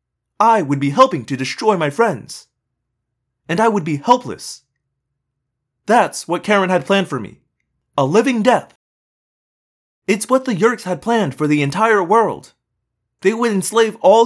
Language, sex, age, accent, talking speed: English, male, 30-49, American, 155 wpm